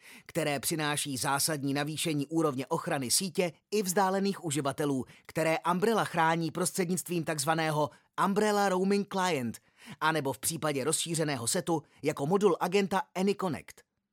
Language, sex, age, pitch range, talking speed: Czech, male, 30-49, 145-185 Hz, 115 wpm